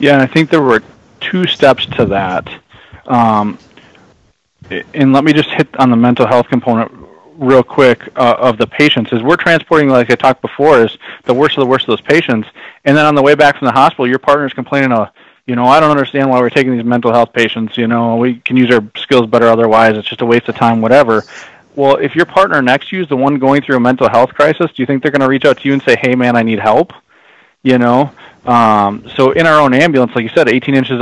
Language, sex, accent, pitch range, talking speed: English, male, American, 120-140 Hz, 250 wpm